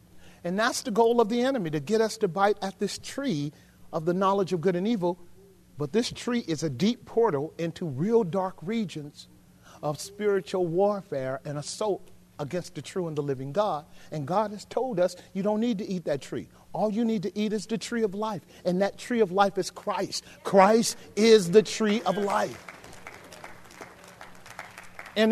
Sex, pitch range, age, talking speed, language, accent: male, 175-225 Hz, 40-59, 190 wpm, English, American